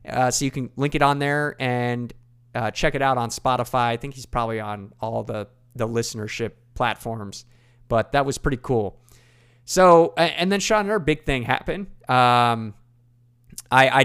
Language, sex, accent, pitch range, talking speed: English, male, American, 120-135 Hz, 175 wpm